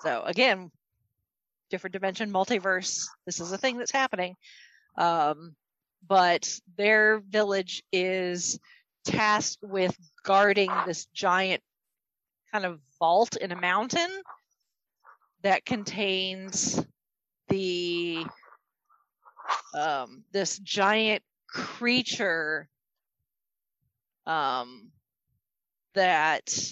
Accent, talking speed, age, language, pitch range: American, 80 wpm, 40-59, English, 175-210 Hz